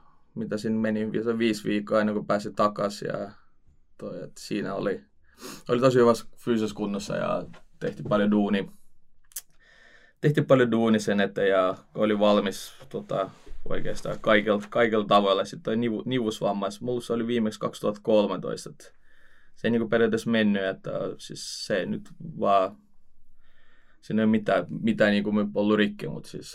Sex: male